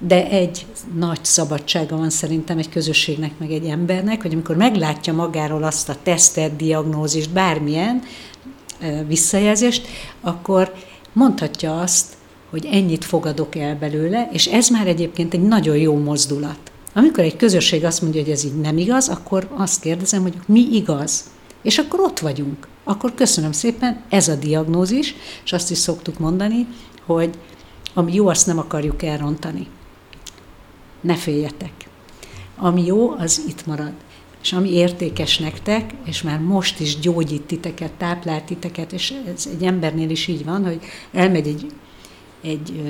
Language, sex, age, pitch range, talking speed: Hungarian, female, 60-79, 155-180 Hz, 145 wpm